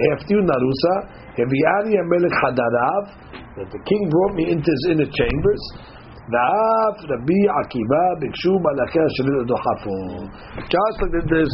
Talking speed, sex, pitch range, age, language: 60 wpm, male, 145-190 Hz, 60-79, English